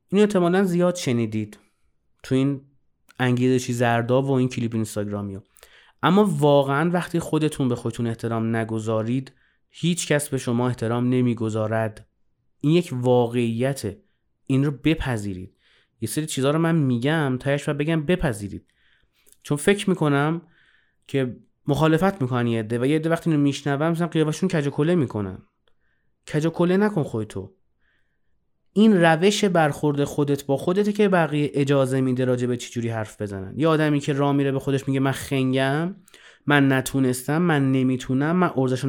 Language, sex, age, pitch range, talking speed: Persian, male, 30-49, 125-170 Hz, 140 wpm